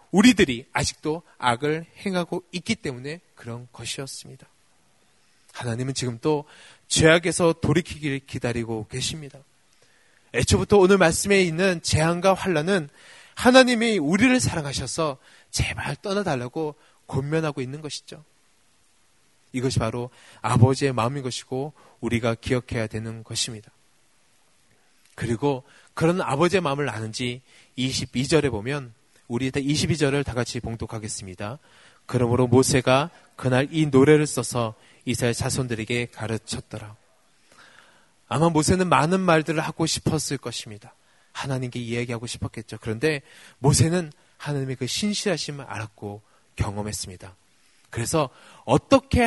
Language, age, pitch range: Korean, 20-39, 120-155 Hz